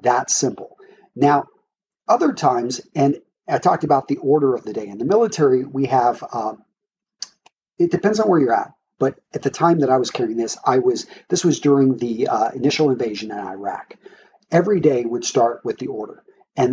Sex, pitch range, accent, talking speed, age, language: male, 130-215 Hz, American, 190 wpm, 40-59, English